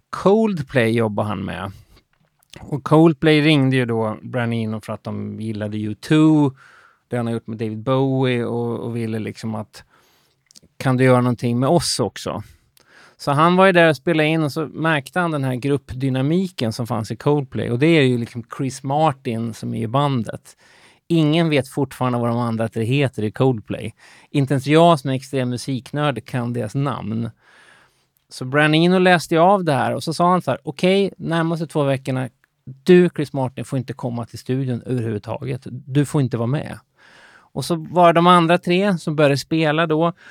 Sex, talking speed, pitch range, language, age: male, 190 wpm, 120-155 Hz, Swedish, 30-49